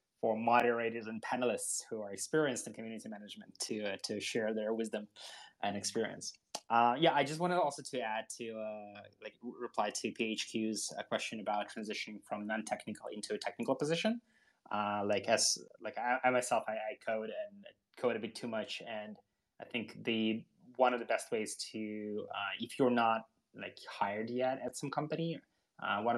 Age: 20-39